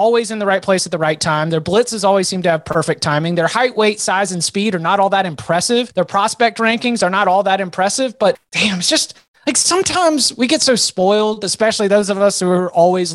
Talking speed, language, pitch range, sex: 240 wpm, English, 170-225 Hz, male